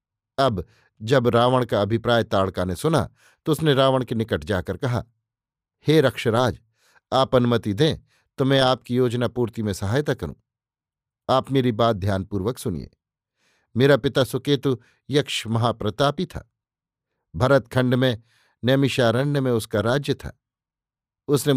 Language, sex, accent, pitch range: Hindi, male, native, 110-135 Hz